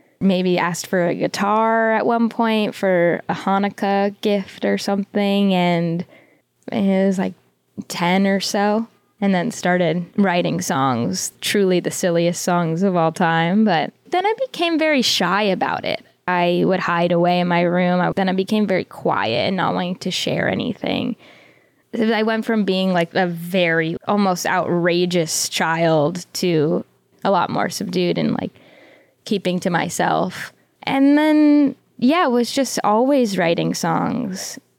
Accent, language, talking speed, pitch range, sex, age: American, English, 150 wpm, 180-220 Hz, female, 10-29